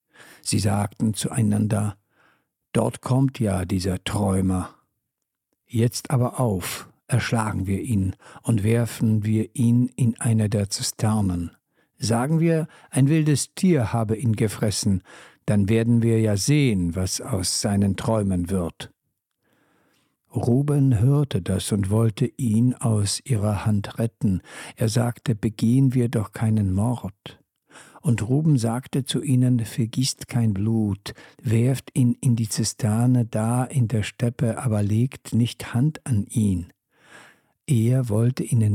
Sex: male